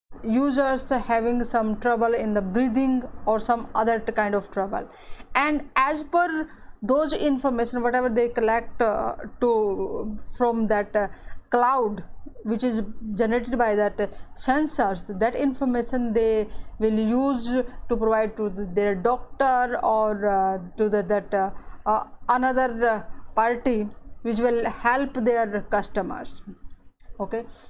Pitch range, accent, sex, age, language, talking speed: 220-260 Hz, Indian, female, 20-39, English, 130 wpm